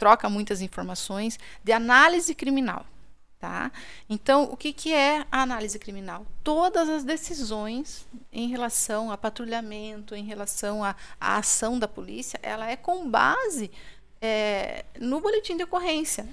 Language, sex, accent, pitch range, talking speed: Portuguese, female, Brazilian, 220-280 Hz, 135 wpm